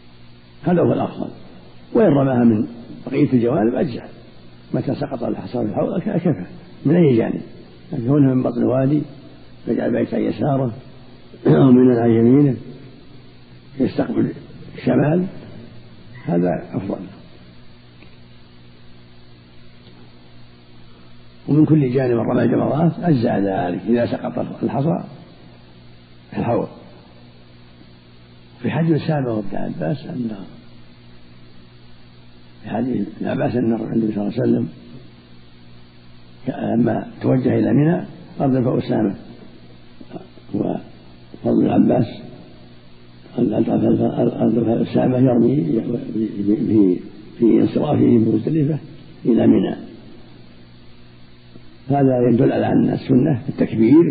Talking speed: 90 wpm